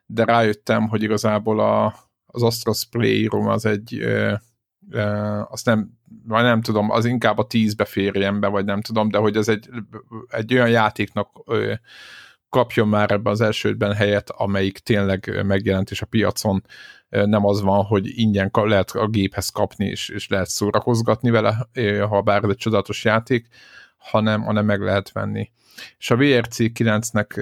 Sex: male